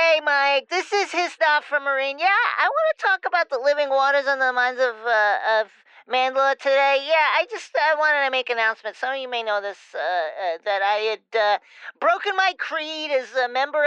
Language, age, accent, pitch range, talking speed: English, 40-59, American, 215-275 Hz, 220 wpm